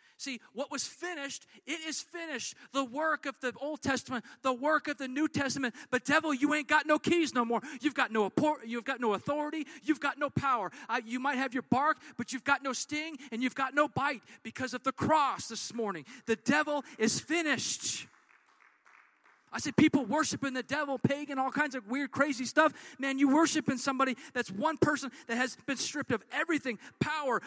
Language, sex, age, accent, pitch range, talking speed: English, male, 40-59, American, 240-295 Hz, 215 wpm